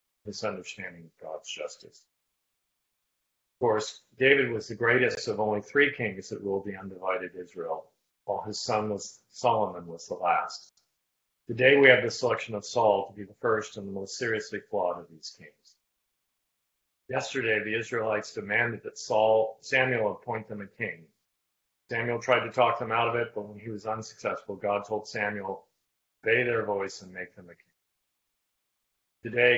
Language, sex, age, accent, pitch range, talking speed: English, male, 40-59, American, 100-120 Hz, 165 wpm